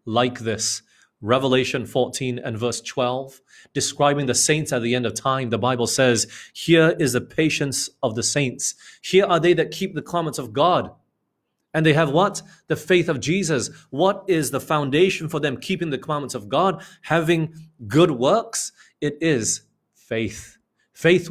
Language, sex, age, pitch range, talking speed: English, male, 30-49, 115-155 Hz, 170 wpm